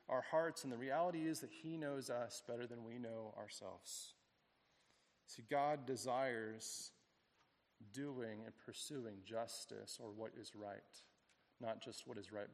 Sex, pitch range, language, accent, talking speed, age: male, 115-160 Hz, English, American, 150 wpm, 40-59